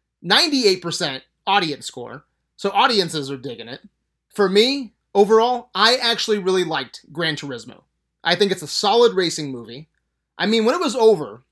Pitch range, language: 160-215 Hz, English